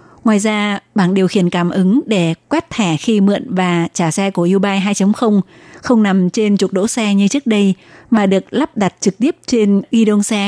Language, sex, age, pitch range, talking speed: Vietnamese, female, 20-39, 185-215 Hz, 210 wpm